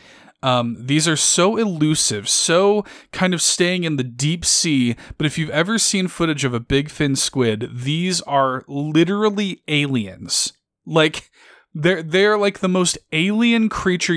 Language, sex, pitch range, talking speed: English, male, 125-165 Hz, 155 wpm